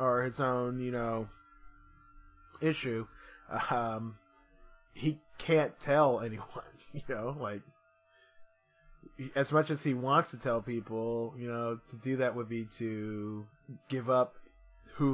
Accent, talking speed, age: American, 130 wpm, 20-39